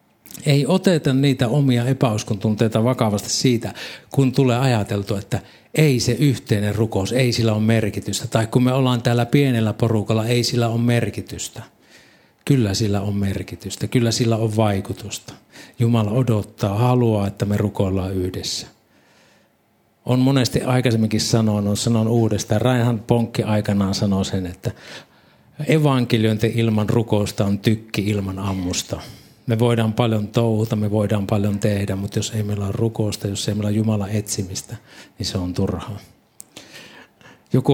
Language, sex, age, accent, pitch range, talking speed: Finnish, male, 60-79, native, 105-125 Hz, 140 wpm